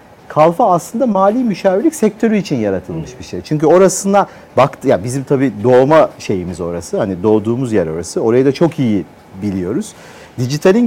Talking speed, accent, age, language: 160 wpm, Turkish, 50-69, English